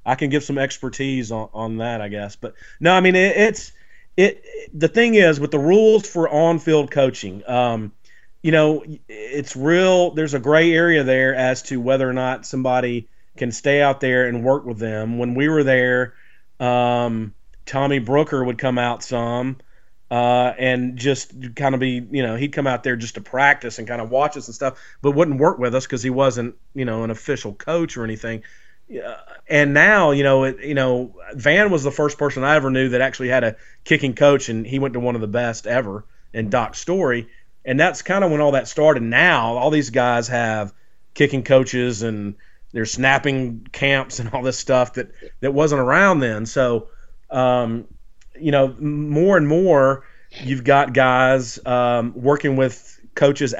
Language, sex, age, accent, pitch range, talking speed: English, male, 30-49, American, 120-145 Hz, 200 wpm